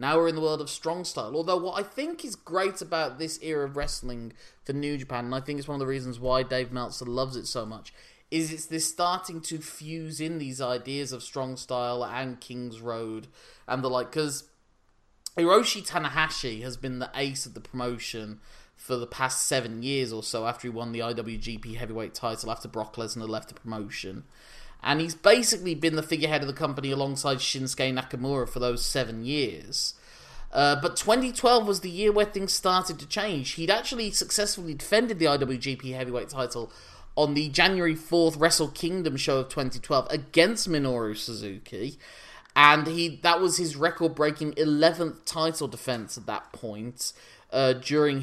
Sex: male